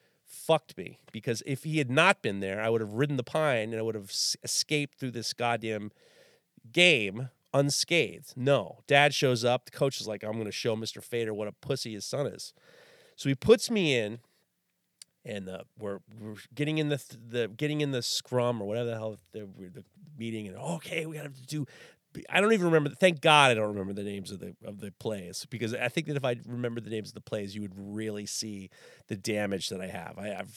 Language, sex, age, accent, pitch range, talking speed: English, male, 30-49, American, 110-150 Hz, 225 wpm